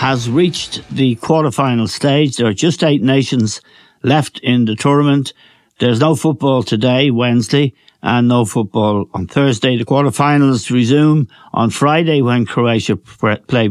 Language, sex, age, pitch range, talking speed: English, male, 60-79, 115-145 Hz, 140 wpm